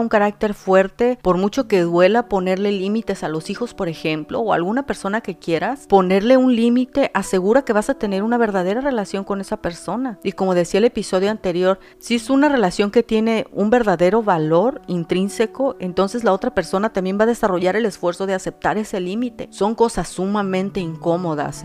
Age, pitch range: 40-59, 180-225 Hz